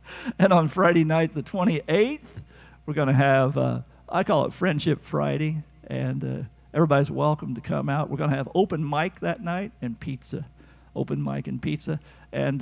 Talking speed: 175 wpm